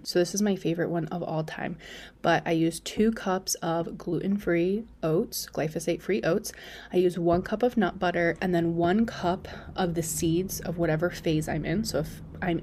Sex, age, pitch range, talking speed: female, 20-39, 170-210 Hz, 195 wpm